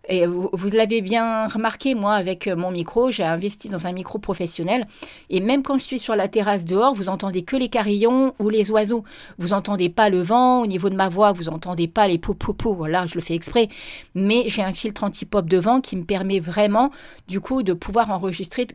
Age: 40-59